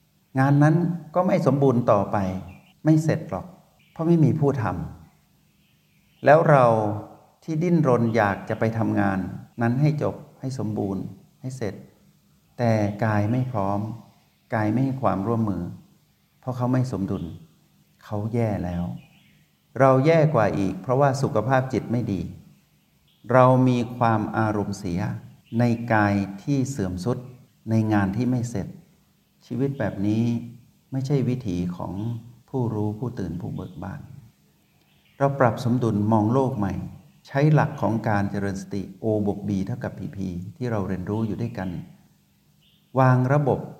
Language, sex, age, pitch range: Thai, male, 60-79, 100-130 Hz